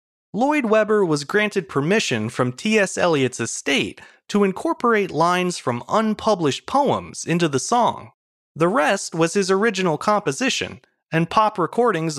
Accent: American